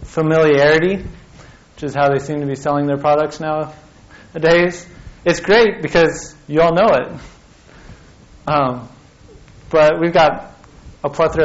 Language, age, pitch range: English, 30-49, 135-160 Hz